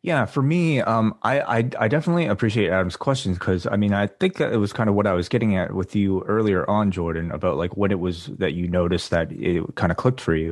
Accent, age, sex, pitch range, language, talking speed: American, 20-39, male, 90-110 Hz, English, 260 wpm